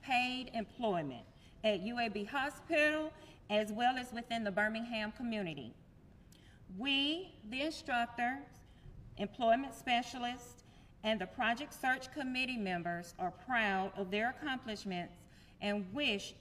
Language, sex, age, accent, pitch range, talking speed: English, female, 40-59, American, 200-250 Hz, 110 wpm